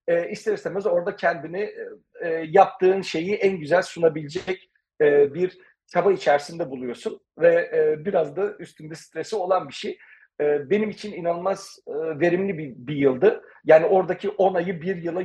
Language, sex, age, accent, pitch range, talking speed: Turkish, male, 50-69, native, 155-200 Hz, 155 wpm